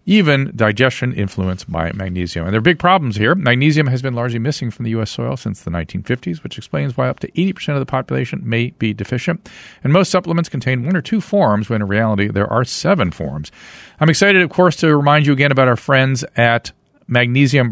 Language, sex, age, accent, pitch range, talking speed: English, male, 40-59, American, 105-150 Hz, 215 wpm